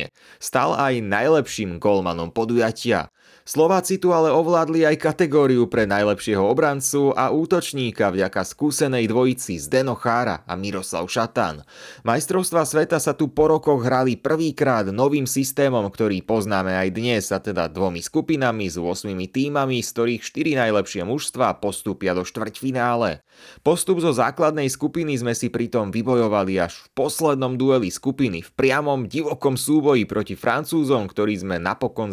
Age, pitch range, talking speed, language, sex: 30-49, 110-155 Hz, 140 wpm, Slovak, male